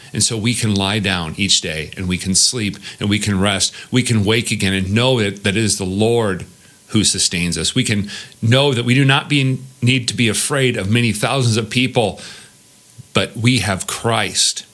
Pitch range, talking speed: 95-115 Hz, 205 wpm